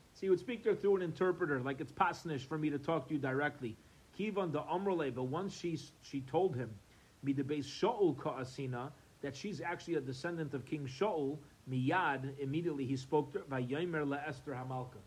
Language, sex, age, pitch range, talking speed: English, male, 40-59, 140-200 Hz, 190 wpm